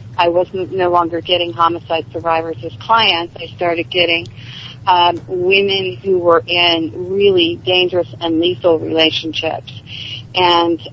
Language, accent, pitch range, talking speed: English, American, 160-200 Hz, 125 wpm